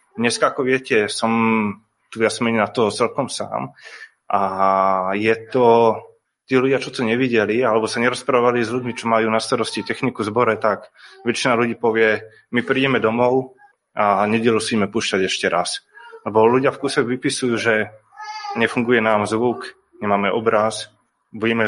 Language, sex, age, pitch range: Slovak, male, 20-39, 110-125 Hz